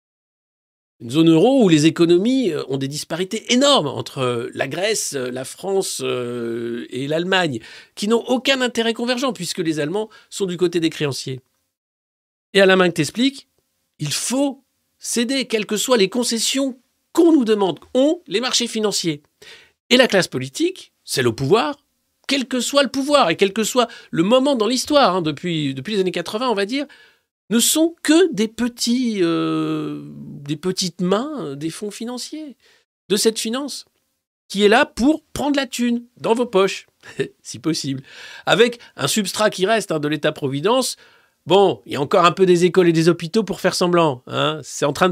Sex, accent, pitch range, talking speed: male, French, 165-245 Hz, 180 wpm